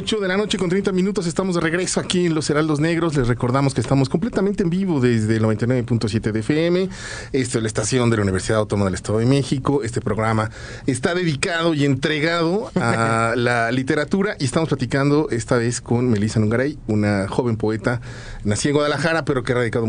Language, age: Spanish, 40-59